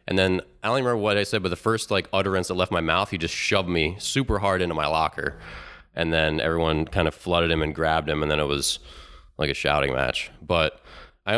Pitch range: 75-95 Hz